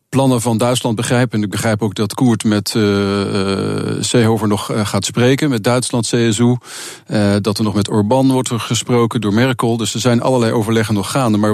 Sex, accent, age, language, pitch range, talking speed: male, Dutch, 40-59, Dutch, 105-120 Hz, 205 wpm